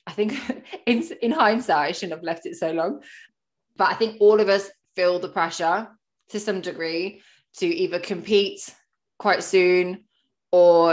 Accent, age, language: British, 20-39, English